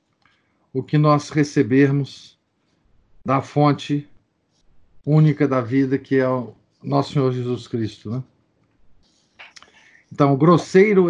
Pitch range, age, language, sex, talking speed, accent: 130-155 Hz, 50-69, Portuguese, male, 110 wpm, Brazilian